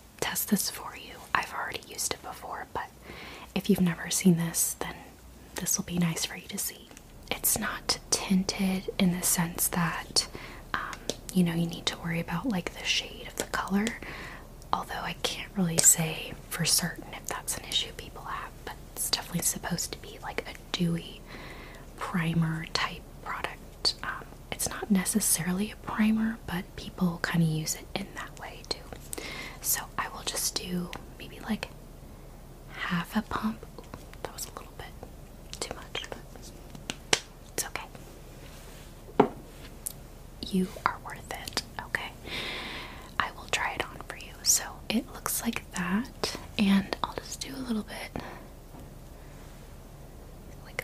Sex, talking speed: female, 145 wpm